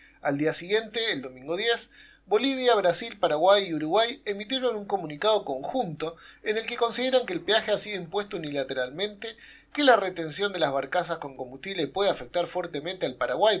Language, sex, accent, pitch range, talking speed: Spanish, male, Argentinian, 160-220 Hz, 170 wpm